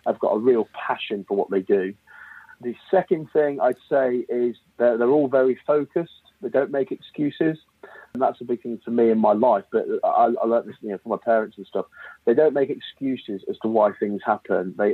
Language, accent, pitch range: English, British, 110-140 Hz